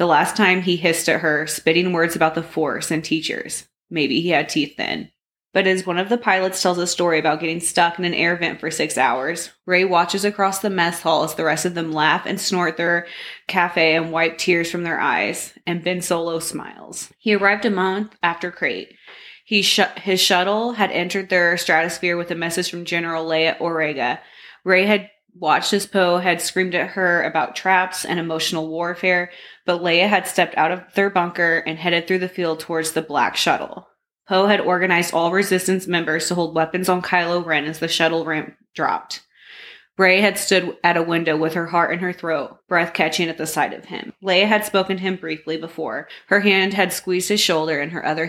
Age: 20-39